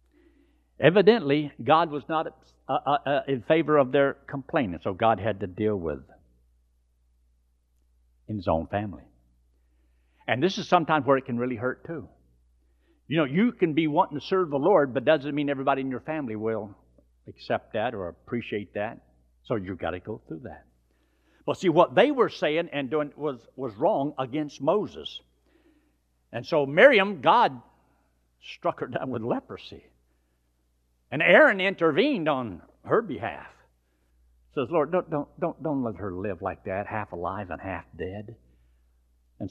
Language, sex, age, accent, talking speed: English, male, 60-79, American, 165 wpm